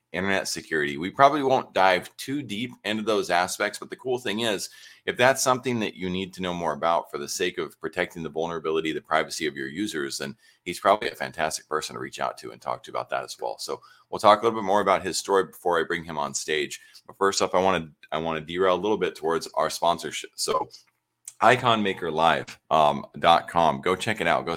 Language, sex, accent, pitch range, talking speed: English, male, American, 80-100 Hz, 230 wpm